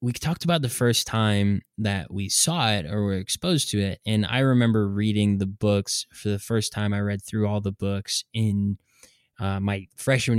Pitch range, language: 100-115 Hz, English